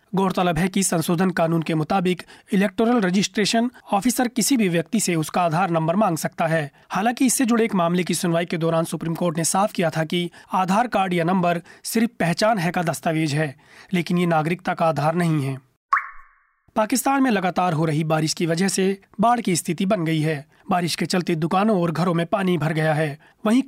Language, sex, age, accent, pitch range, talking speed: Hindi, male, 30-49, native, 165-200 Hz, 205 wpm